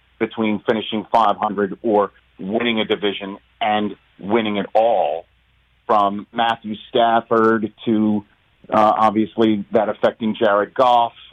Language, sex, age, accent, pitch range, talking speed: English, male, 40-59, American, 110-125 Hz, 110 wpm